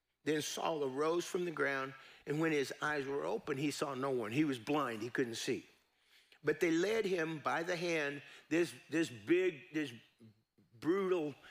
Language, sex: English, male